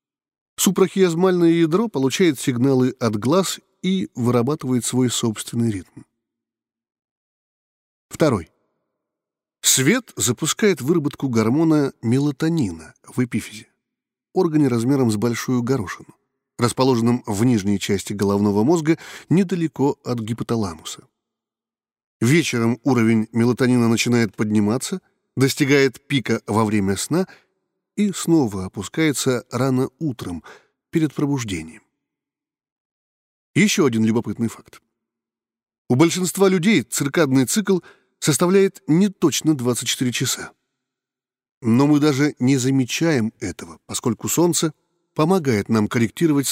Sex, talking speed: male, 95 wpm